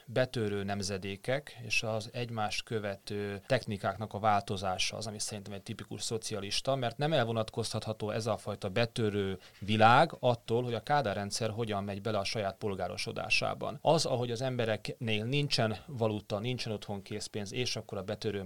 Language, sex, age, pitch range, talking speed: Hungarian, male, 30-49, 105-125 Hz, 150 wpm